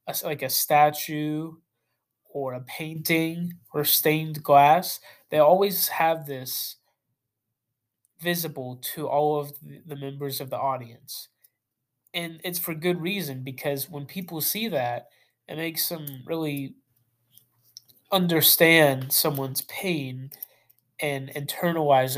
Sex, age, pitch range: male, 20-39, 130-160 Hz